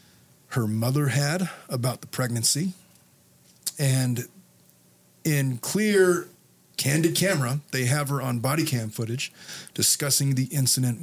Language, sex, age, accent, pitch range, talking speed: English, male, 30-49, American, 115-150 Hz, 115 wpm